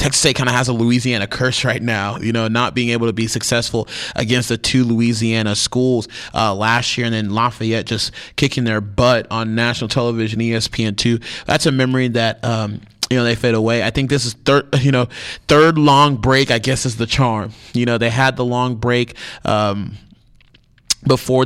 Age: 30-49